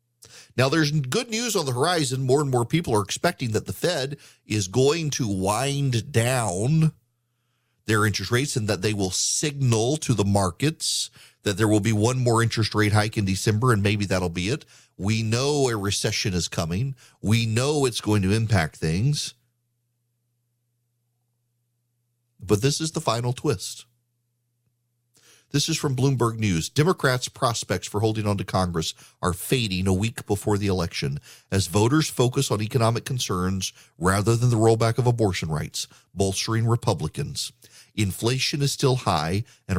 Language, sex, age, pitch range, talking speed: English, male, 40-59, 105-135 Hz, 160 wpm